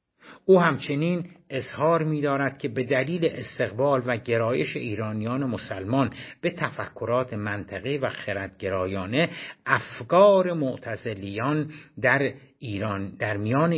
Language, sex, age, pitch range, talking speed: Persian, male, 60-79, 105-145 Hz, 110 wpm